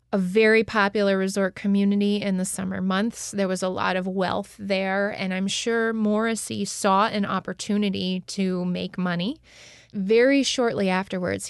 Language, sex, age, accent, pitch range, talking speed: English, female, 20-39, American, 180-205 Hz, 150 wpm